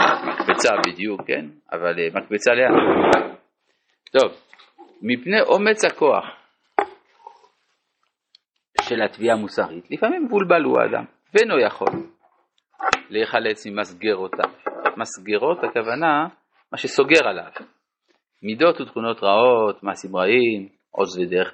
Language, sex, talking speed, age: Hebrew, male, 90 wpm, 50-69